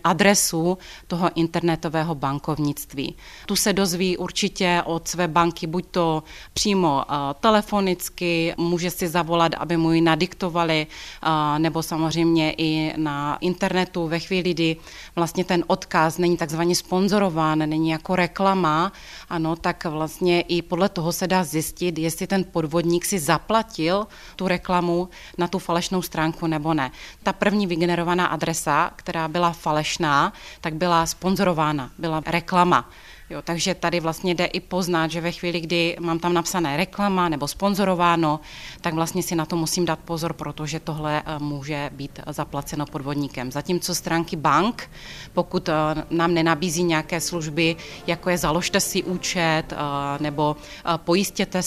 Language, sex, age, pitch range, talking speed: Czech, female, 30-49, 155-180 Hz, 140 wpm